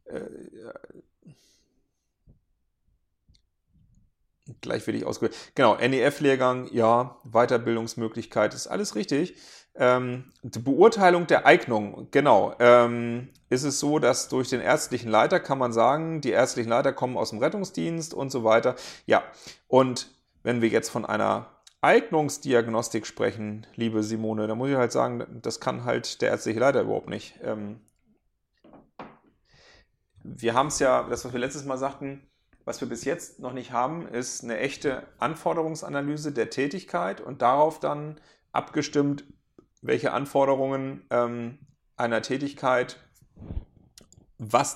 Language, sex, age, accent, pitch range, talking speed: German, male, 40-59, German, 120-145 Hz, 135 wpm